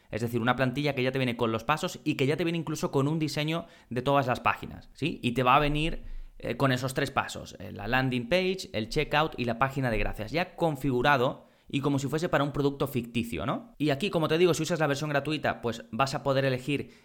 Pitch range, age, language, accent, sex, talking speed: 120-150 Hz, 20-39, Spanish, Spanish, male, 255 wpm